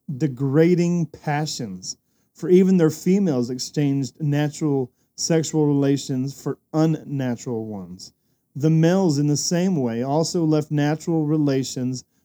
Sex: male